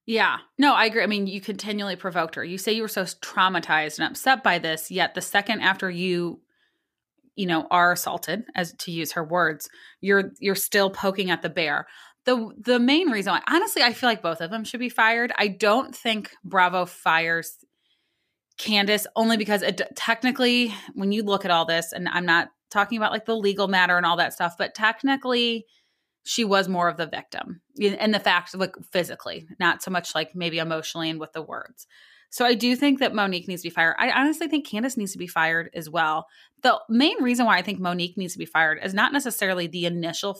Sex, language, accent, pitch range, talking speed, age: female, English, American, 175-225 Hz, 215 wpm, 20-39